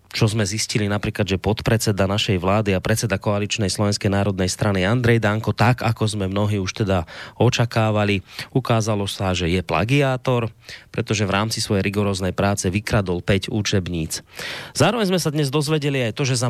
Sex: male